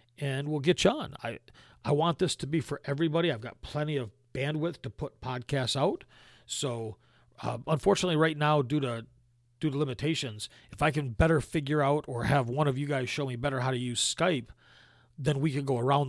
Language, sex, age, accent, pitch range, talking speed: English, male, 40-59, American, 120-145 Hz, 210 wpm